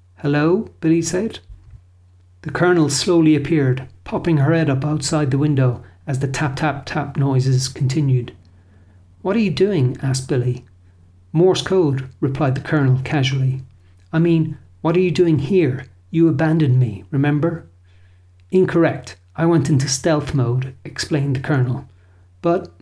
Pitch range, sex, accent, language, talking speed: 95-160 Hz, male, Irish, English, 135 wpm